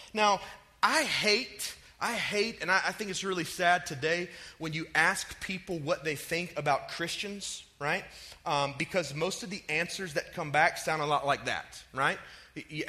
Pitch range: 160-200 Hz